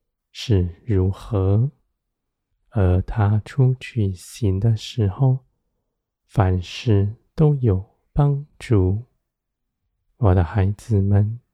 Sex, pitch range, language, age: male, 95-125 Hz, Chinese, 20-39